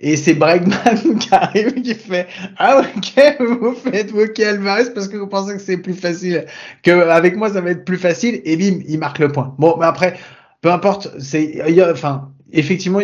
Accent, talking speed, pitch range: French, 205 wpm, 135-180 Hz